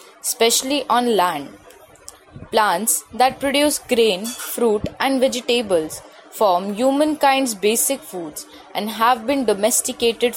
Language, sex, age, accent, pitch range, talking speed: English, female, 20-39, Indian, 195-250 Hz, 105 wpm